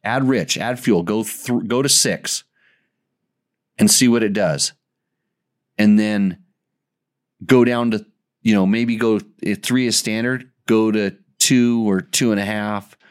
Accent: American